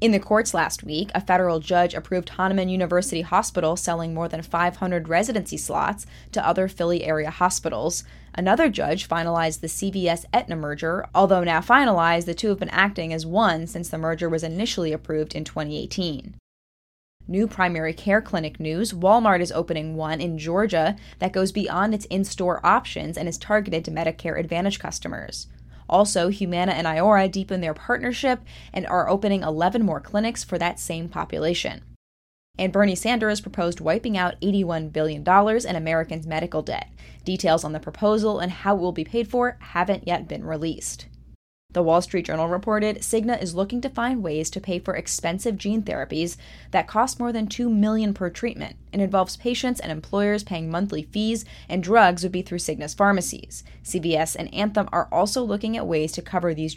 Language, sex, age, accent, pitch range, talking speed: English, female, 10-29, American, 160-200 Hz, 175 wpm